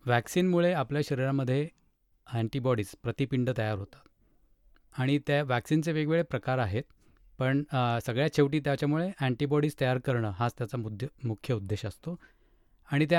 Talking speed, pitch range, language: 90 wpm, 120-150 Hz, Marathi